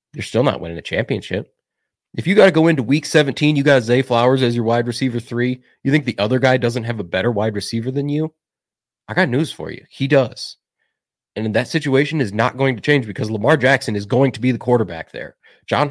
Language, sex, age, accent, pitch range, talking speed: English, male, 30-49, American, 110-145 Hz, 235 wpm